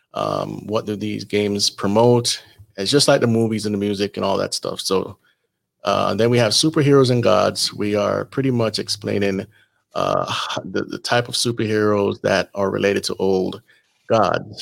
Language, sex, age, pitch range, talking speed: English, male, 30-49, 100-120 Hz, 175 wpm